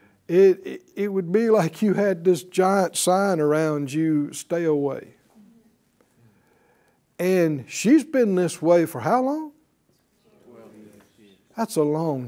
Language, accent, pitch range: English, American, 140-195 Hz